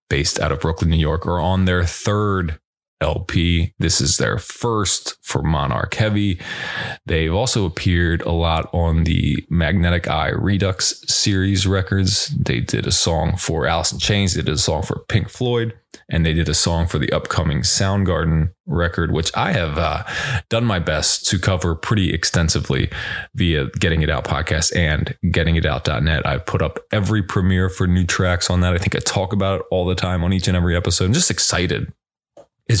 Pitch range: 80-100 Hz